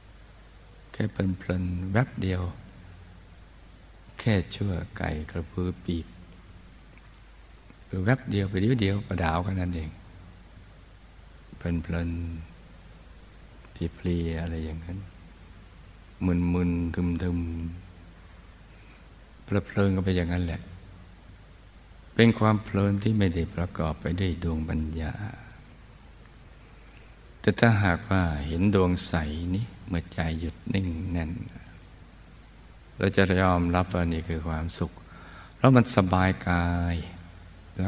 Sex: male